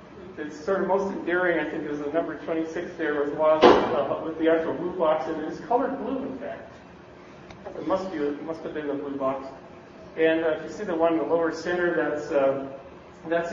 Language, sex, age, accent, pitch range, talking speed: English, male, 40-59, American, 145-170 Hz, 220 wpm